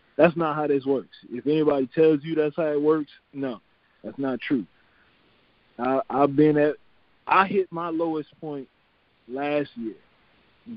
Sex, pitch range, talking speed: male, 125-150 Hz, 160 wpm